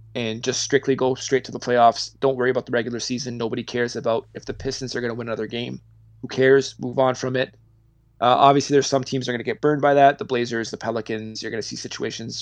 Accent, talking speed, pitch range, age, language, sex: American, 260 wpm, 110-130 Hz, 20-39, English, male